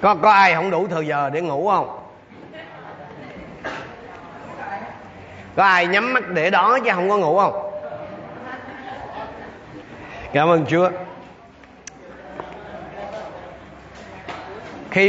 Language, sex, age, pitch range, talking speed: Vietnamese, male, 30-49, 155-200 Hz, 100 wpm